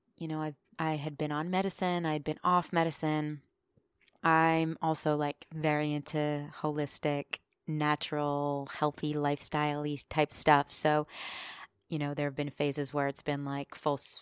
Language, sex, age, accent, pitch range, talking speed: English, female, 20-39, American, 150-175 Hz, 150 wpm